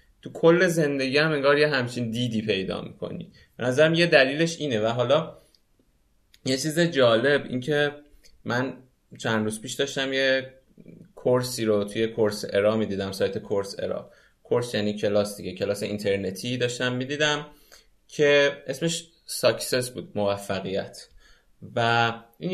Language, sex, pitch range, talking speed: Persian, male, 105-150 Hz, 140 wpm